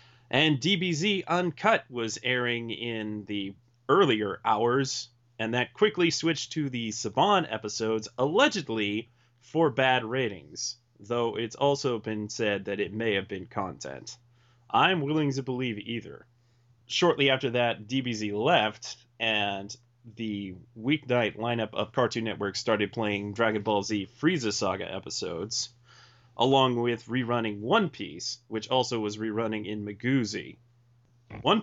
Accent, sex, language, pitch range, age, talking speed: American, male, English, 110-140 Hz, 30-49, 130 wpm